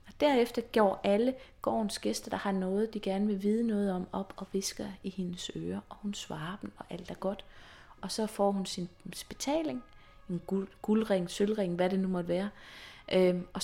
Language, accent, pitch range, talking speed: Danish, native, 180-220 Hz, 190 wpm